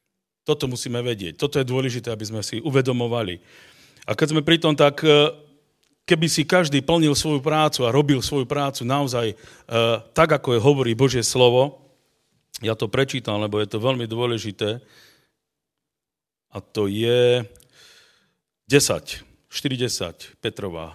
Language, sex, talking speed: Slovak, male, 130 wpm